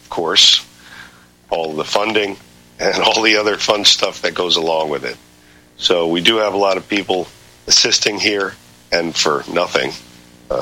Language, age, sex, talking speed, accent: English, 50-69, male, 165 wpm, American